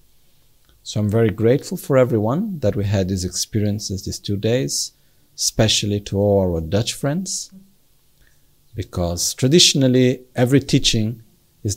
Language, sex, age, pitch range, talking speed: Italian, male, 50-69, 90-115 Hz, 125 wpm